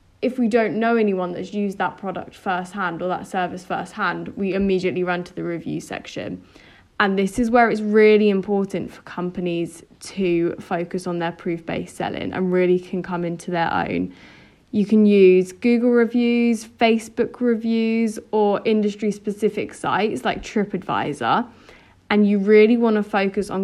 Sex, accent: female, British